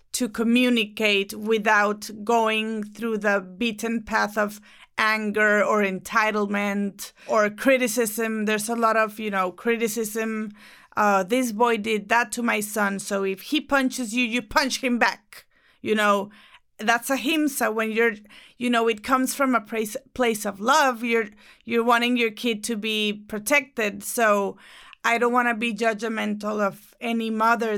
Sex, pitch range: female, 210-240 Hz